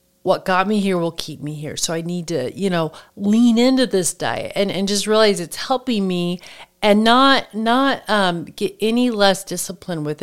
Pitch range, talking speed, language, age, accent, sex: 175-220 Hz, 200 wpm, English, 40-59, American, female